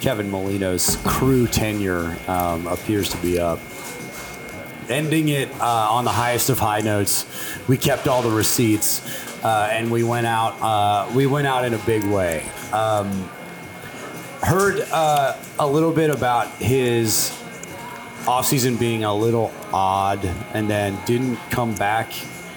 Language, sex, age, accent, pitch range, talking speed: English, male, 30-49, American, 100-125 Hz, 145 wpm